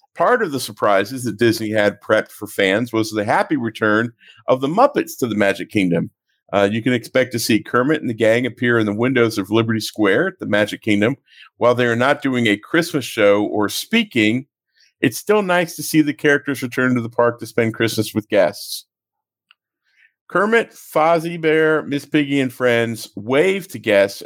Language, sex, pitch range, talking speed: English, male, 105-140 Hz, 195 wpm